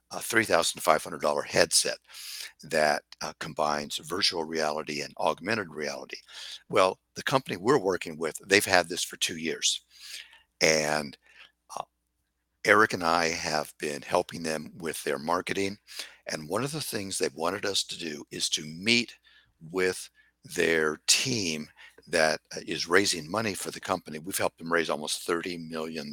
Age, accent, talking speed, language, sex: 60-79, American, 150 wpm, English, male